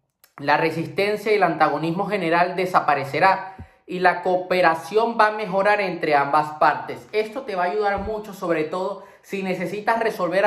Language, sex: Spanish, male